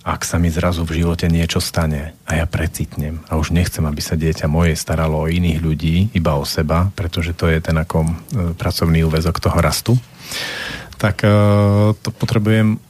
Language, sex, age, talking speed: Slovak, male, 40-59, 170 wpm